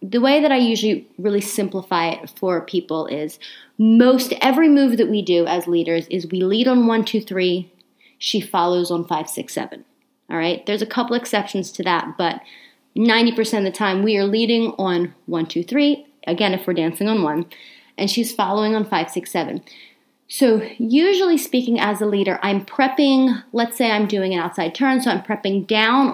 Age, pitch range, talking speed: 30-49, 190-240 Hz, 195 wpm